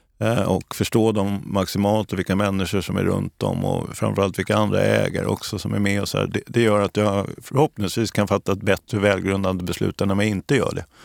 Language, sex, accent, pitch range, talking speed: English, male, Swedish, 95-115 Hz, 215 wpm